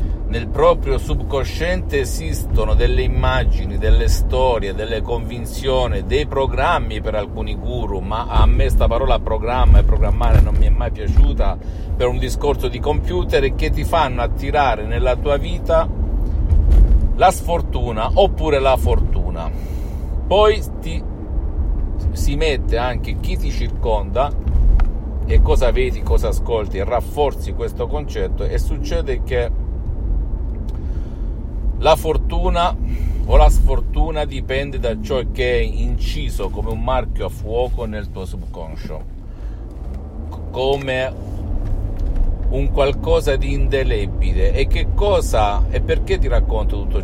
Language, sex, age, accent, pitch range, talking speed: Italian, male, 50-69, native, 70-90 Hz, 125 wpm